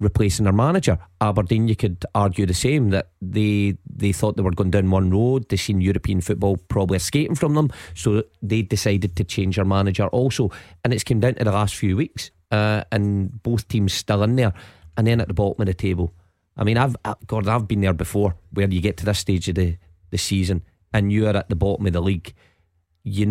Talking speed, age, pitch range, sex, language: 225 wpm, 30-49, 95-115 Hz, male, English